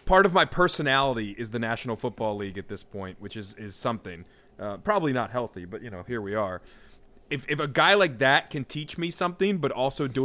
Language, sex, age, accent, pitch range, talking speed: English, male, 30-49, American, 115-145 Hz, 230 wpm